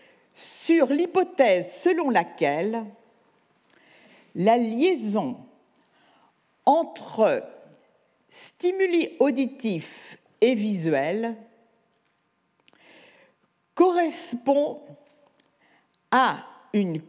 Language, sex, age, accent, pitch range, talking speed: French, female, 50-69, French, 205-290 Hz, 50 wpm